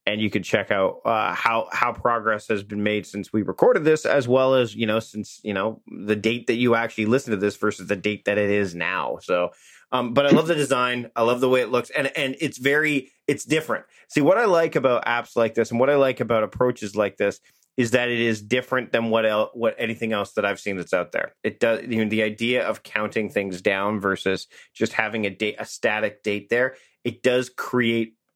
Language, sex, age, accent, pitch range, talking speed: English, male, 30-49, American, 105-130 Hz, 240 wpm